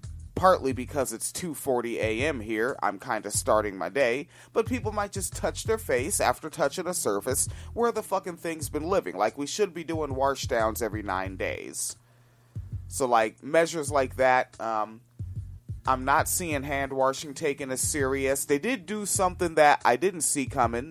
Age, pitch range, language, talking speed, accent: 30-49, 115-165 Hz, English, 180 wpm, American